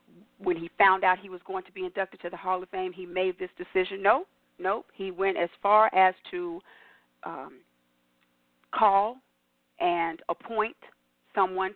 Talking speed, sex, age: 165 wpm, female, 40-59